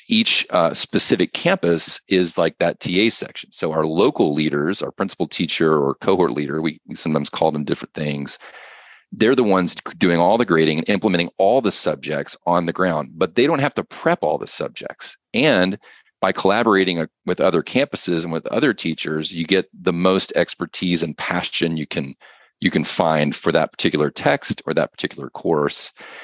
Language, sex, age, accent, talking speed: English, male, 40-59, American, 185 wpm